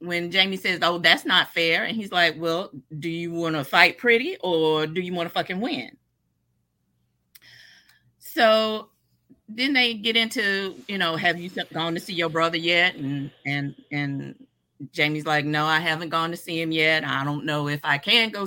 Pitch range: 145-185 Hz